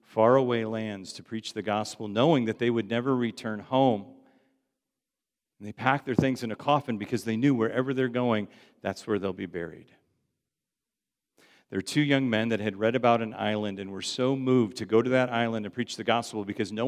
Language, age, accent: English, 50-69, American